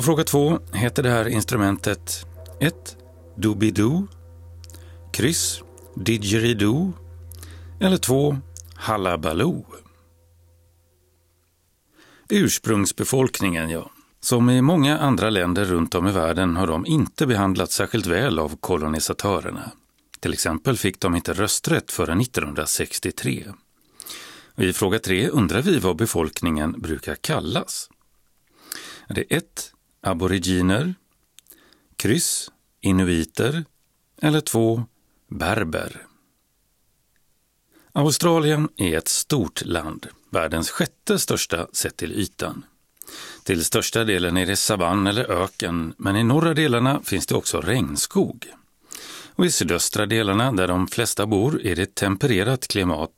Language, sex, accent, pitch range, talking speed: Swedish, male, native, 85-120 Hz, 110 wpm